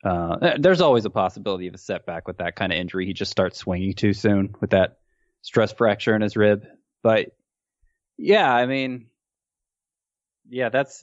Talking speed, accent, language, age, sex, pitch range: 175 wpm, American, English, 20-39, male, 95-125 Hz